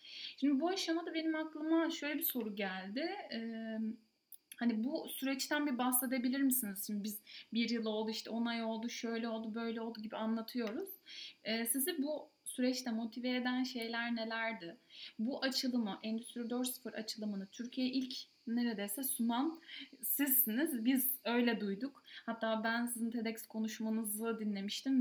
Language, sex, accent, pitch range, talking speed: Turkish, female, native, 220-265 Hz, 135 wpm